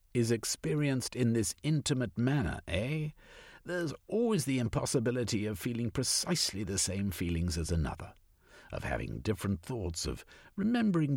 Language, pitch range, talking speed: English, 85-130 Hz, 135 wpm